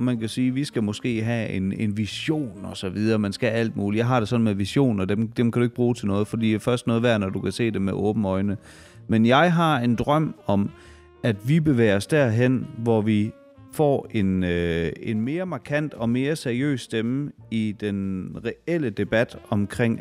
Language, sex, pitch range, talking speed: Danish, male, 105-125 Hz, 220 wpm